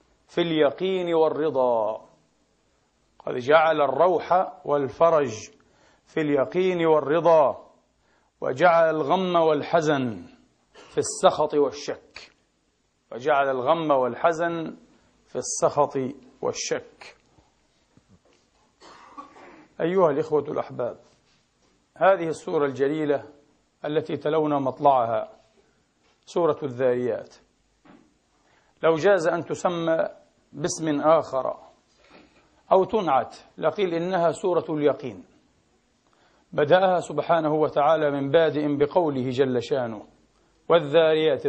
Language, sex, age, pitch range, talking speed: Arabic, male, 40-59, 145-175 Hz, 80 wpm